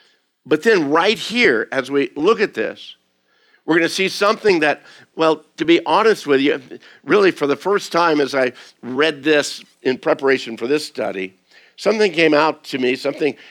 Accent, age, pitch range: American, 60-79, 130-165 Hz